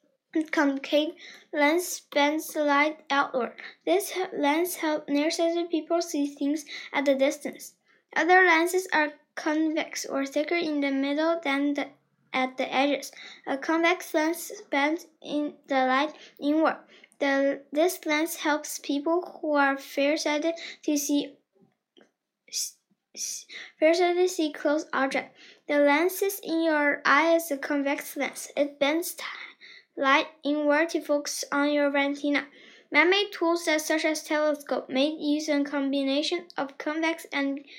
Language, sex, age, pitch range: Chinese, female, 10-29, 285-330 Hz